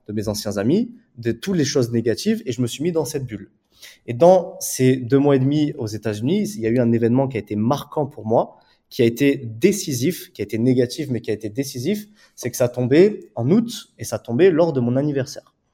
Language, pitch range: French, 120-160 Hz